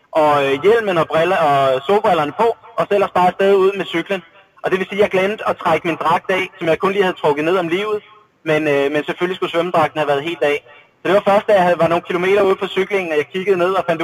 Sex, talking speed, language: male, 270 wpm, Danish